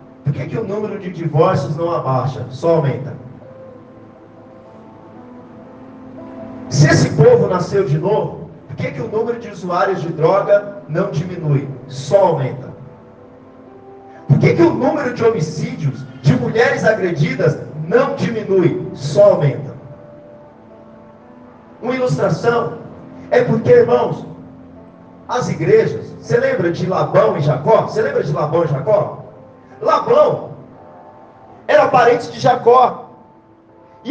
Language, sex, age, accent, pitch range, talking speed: Portuguese, male, 40-59, Brazilian, 130-190 Hz, 120 wpm